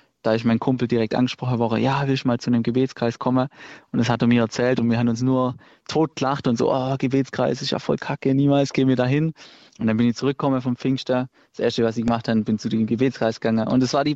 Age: 20-39